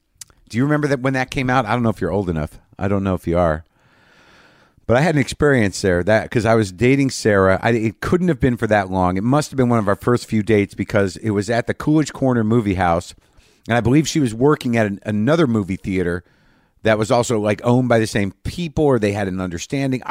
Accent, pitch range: American, 100-130 Hz